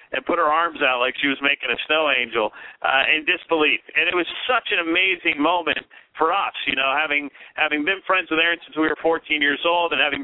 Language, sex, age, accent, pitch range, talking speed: English, male, 40-59, American, 150-180 Hz, 235 wpm